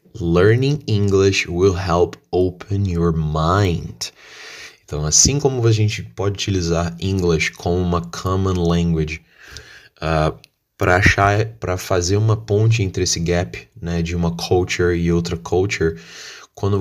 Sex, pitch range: male, 85-105 Hz